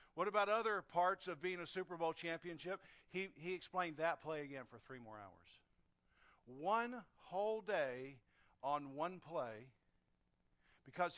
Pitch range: 130-190 Hz